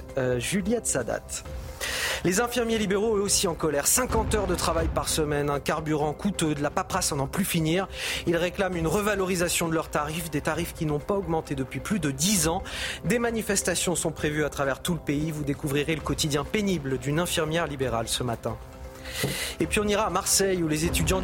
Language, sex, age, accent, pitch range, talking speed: French, male, 30-49, French, 145-195 Hz, 205 wpm